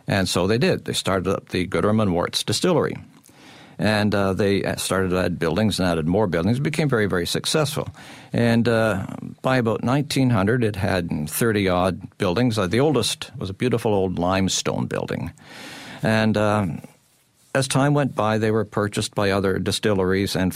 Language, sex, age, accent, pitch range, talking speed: English, male, 60-79, American, 100-125 Hz, 170 wpm